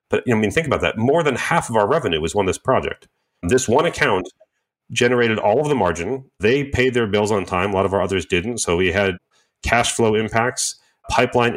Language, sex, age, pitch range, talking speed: English, male, 30-49, 90-115 Hz, 225 wpm